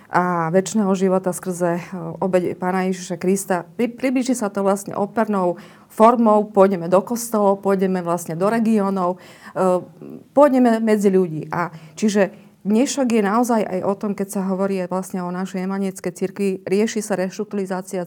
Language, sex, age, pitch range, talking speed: Slovak, female, 40-59, 185-205 Hz, 145 wpm